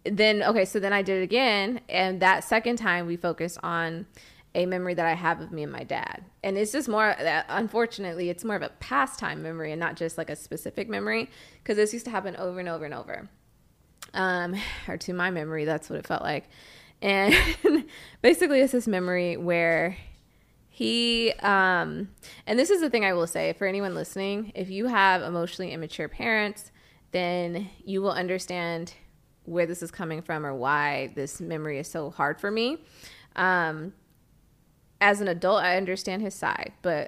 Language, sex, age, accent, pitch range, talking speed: English, female, 20-39, American, 165-205 Hz, 185 wpm